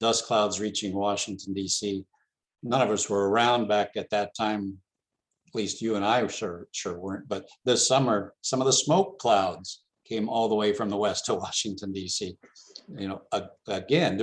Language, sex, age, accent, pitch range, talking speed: English, male, 60-79, American, 95-115 Hz, 180 wpm